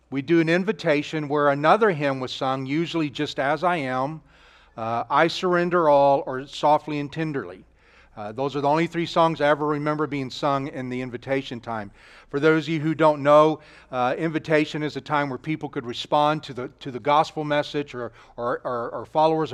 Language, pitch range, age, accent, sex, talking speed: English, 130-170 Hz, 40-59, American, male, 200 wpm